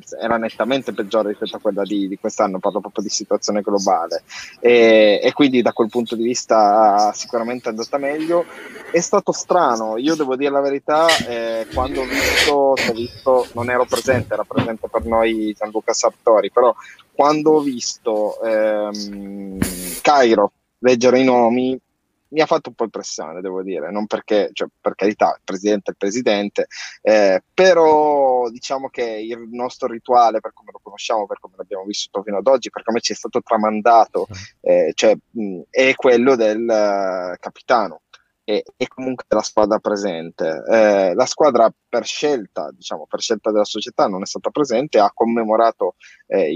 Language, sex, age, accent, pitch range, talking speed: Italian, male, 20-39, native, 105-135 Hz, 170 wpm